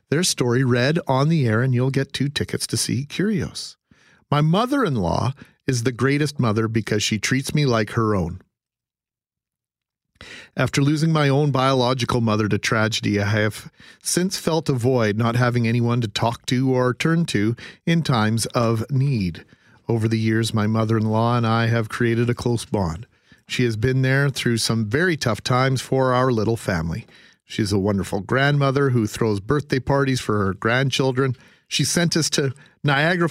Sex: male